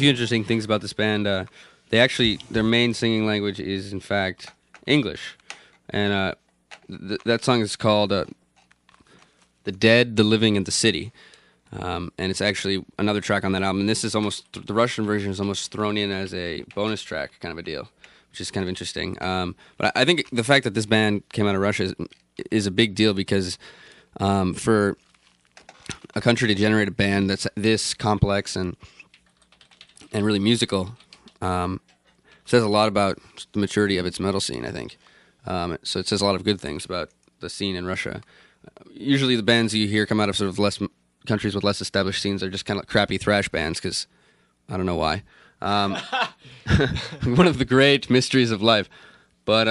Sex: male